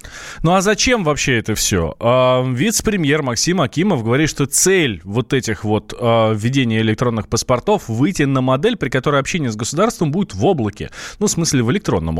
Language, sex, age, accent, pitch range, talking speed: Russian, male, 20-39, native, 115-170 Hz, 175 wpm